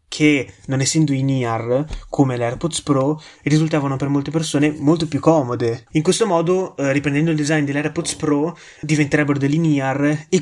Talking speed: 160 wpm